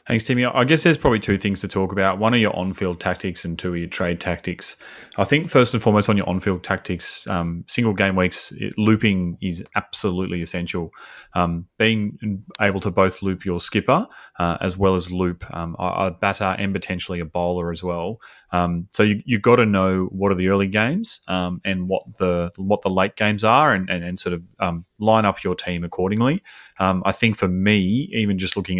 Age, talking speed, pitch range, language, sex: 30-49, 215 wpm, 90-100 Hz, English, male